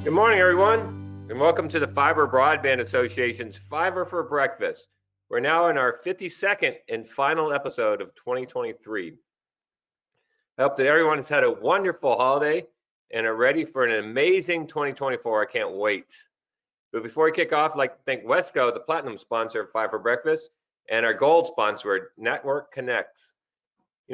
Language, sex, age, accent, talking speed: English, male, 40-59, American, 160 wpm